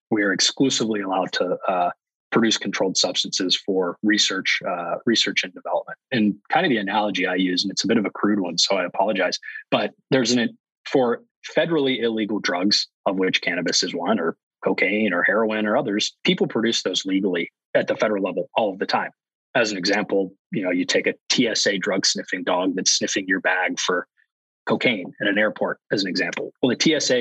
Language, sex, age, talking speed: English, male, 20-39, 200 wpm